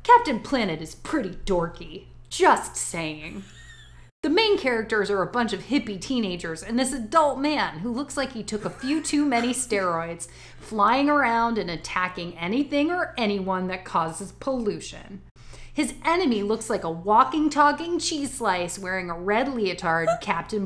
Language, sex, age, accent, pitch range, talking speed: English, female, 30-49, American, 175-275 Hz, 155 wpm